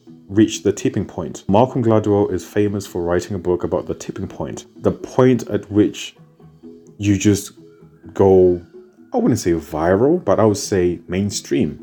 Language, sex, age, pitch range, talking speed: English, male, 30-49, 85-105 Hz, 160 wpm